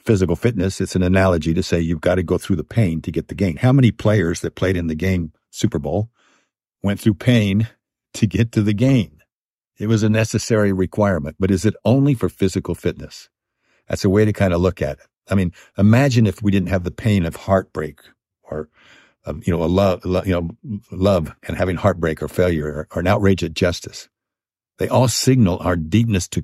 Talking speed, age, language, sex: 205 wpm, 60-79, English, male